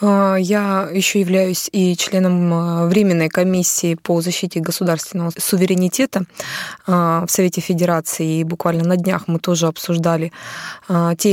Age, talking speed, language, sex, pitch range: 20-39, 115 wpm, Russian, female, 165-190 Hz